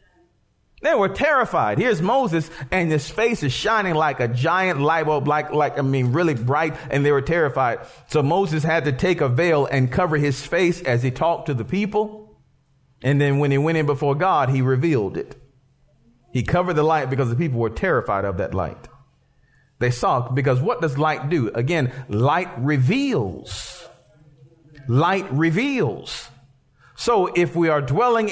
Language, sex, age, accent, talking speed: English, male, 40-59, American, 175 wpm